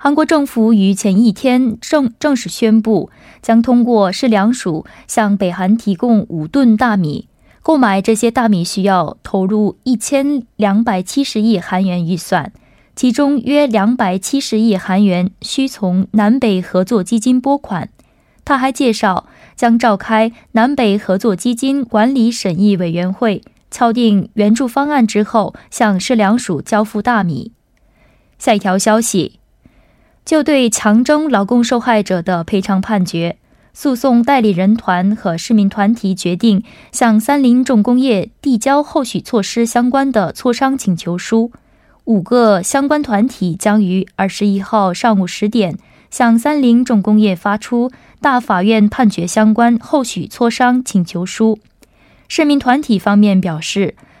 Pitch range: 195-245 Hz